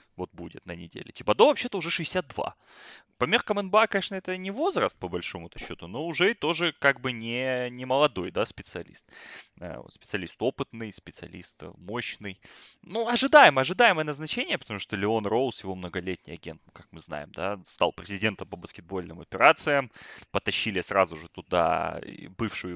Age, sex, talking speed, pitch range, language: 20-39, male, 155 wpm, 95-155 Hz, Russian